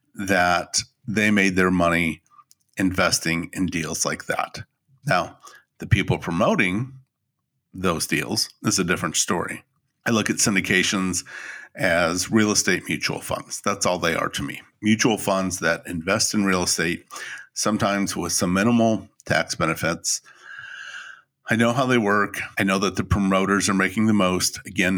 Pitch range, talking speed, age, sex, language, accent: 90-110 Hz, 150 wpm, 50-69, male, English, American